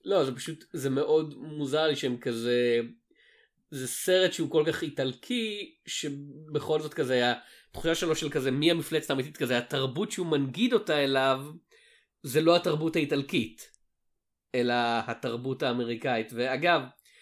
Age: 30-49